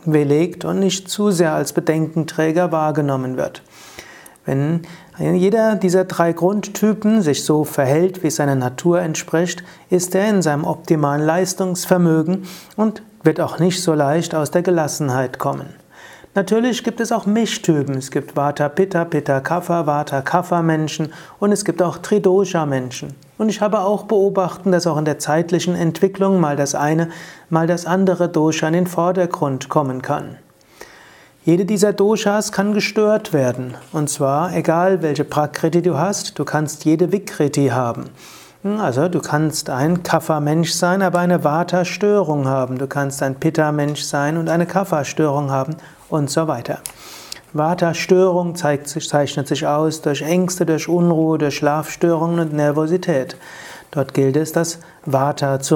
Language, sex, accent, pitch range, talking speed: German, male, German, 145-180 Hz, 145 wpm